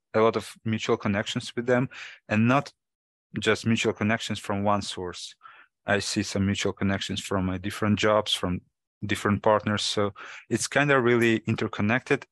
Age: 20-39